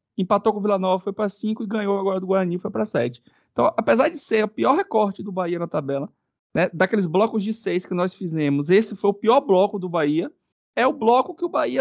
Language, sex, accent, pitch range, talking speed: Portuguese, male, Brazilian, 155-230 Hz, 245 wpm